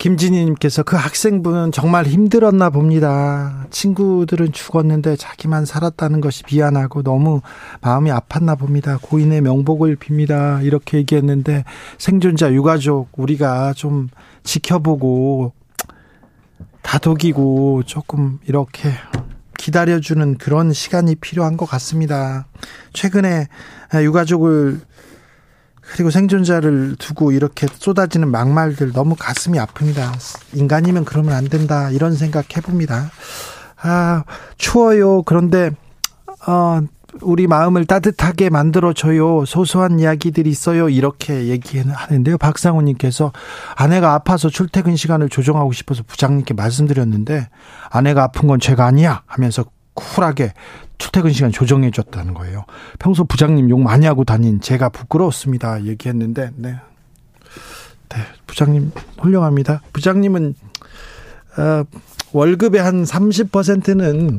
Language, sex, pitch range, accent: Korean, male, 135-170 Hz, native